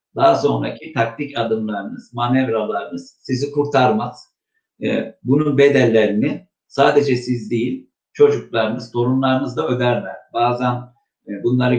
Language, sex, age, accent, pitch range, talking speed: Turkish, male, 60-79, native, 115-145 Hz, 90 wpm